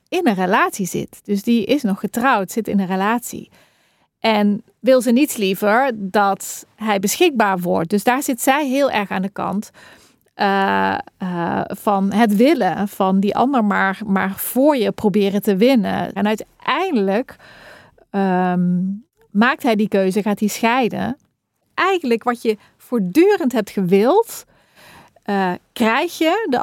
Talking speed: 150 wpm